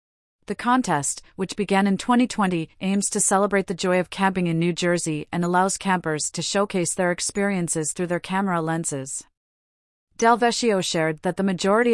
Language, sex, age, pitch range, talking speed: English, female, 40-59, 165-195 Hz, 165 wpm